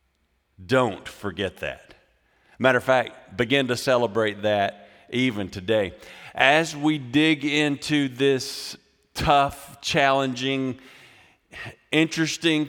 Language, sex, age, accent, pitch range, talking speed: English, male, 50-69, American, 120-145 Hz, 95 wpm